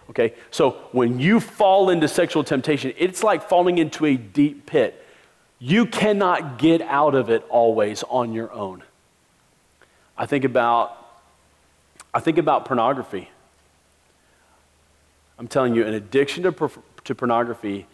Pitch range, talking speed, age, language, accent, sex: 115-165 Hz, 135 wpm, 40-59, English, American, male